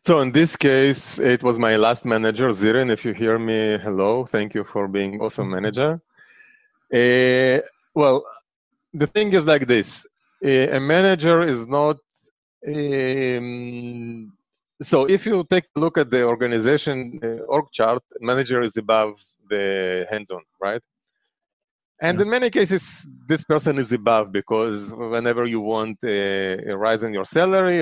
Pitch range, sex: 110-155 Hz, male